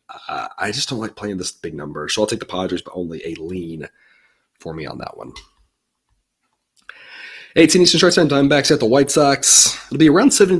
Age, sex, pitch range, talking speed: 30-49, male, 100-130 Hz, 200 wpm